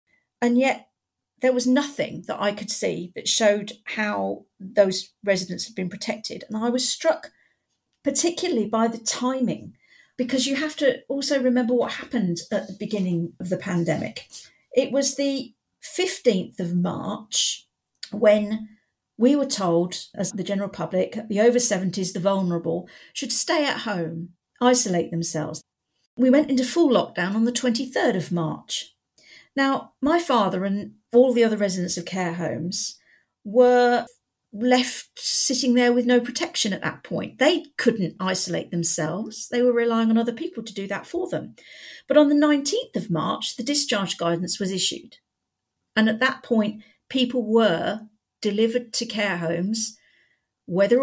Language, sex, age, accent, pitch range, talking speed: English, female, 50-69, British, 195-255 Hz, 155 wpm